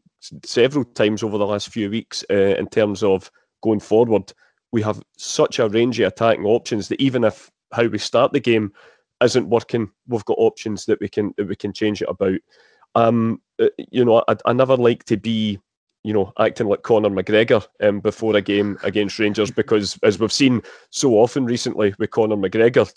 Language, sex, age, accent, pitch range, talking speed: English, male, 30-49, British, 105-120 Hz, 195 wpm